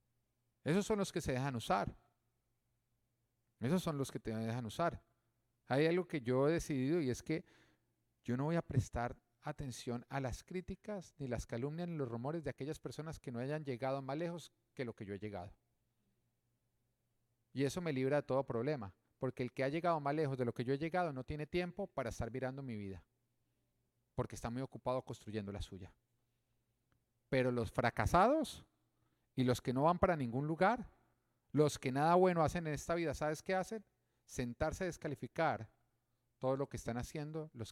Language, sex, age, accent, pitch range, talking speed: Spanish, male, 40-59, Colombian, 115-145 Hz, 190 wpm